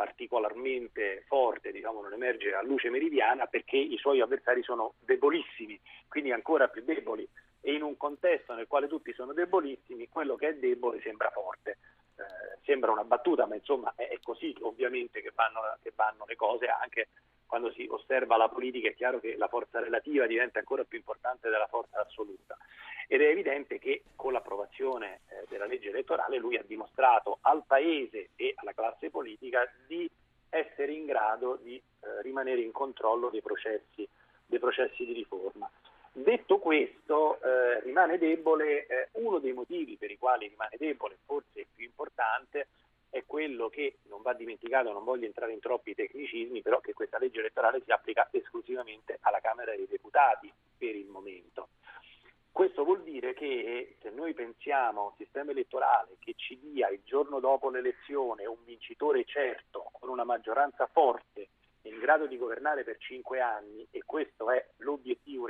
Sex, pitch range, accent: male, 340-430 Hz, native